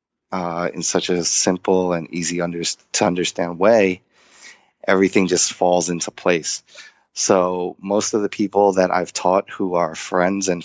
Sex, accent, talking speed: male, American, 150 wpm